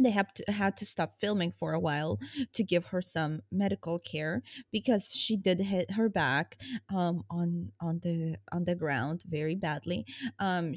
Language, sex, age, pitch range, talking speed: English, female, 20-39, 160-210 Hz, 180 wpm